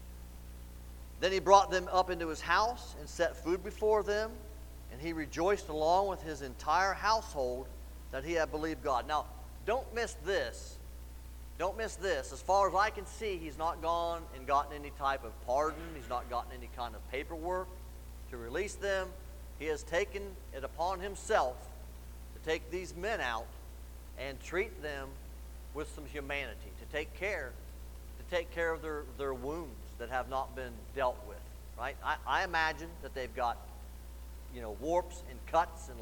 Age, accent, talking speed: 40-59, American, 175 wpm